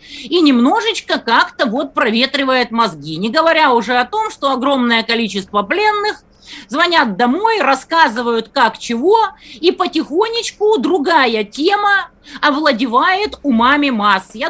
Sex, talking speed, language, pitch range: female, 115 wpm, Russian, 245-345 Hz